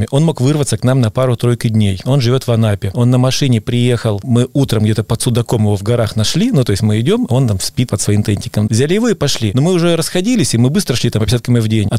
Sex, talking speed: male, 265 wpm